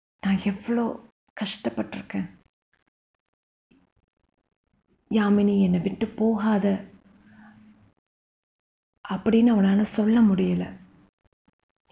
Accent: native